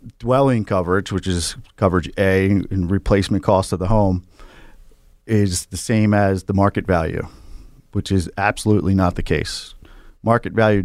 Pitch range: 90-110 Hz